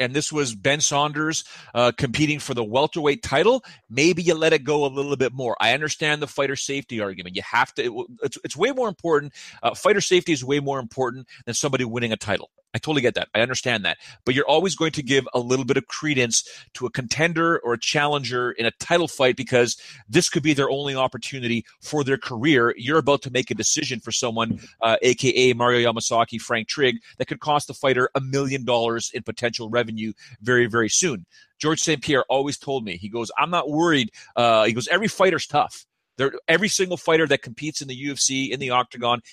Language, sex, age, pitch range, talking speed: English, male, 30-49, 120-155 Hz, 215 wpm